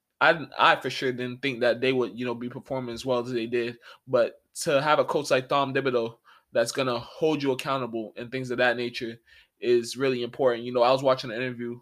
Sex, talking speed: male, 240 wpm